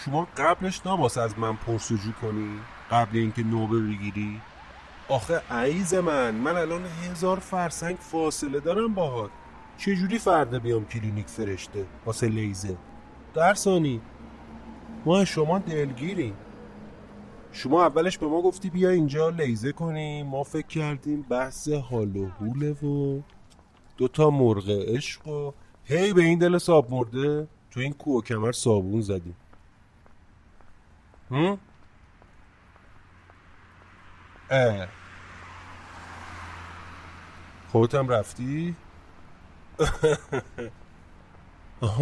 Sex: male